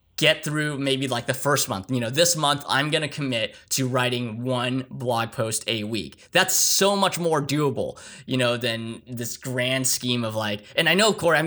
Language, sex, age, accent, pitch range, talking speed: English, male, 10-29, American, 120-145 Hz, 210 wpm